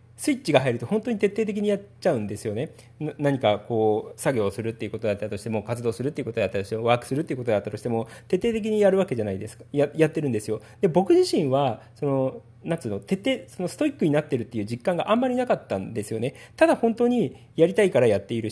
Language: Japanese